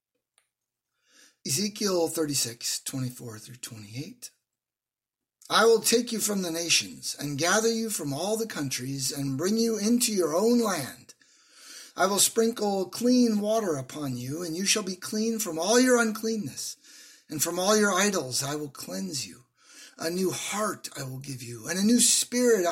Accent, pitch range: American, 145-215 Hz